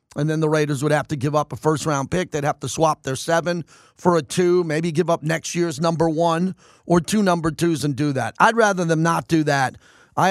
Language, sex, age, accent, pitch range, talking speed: English, male, 40-59, American, 150-175 Hz, 245 wpm